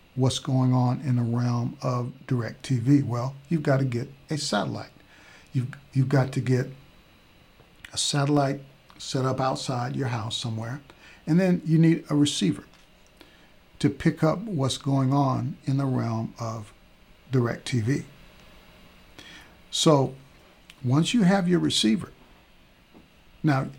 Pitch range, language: 125-140 Hz, English